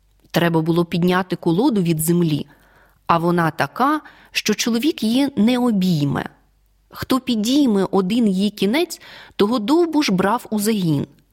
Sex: female